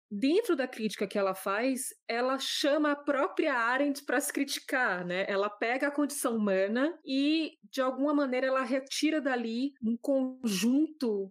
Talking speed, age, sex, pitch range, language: 155 wpm, 20-39, female, 195-250 Hz, Portuguese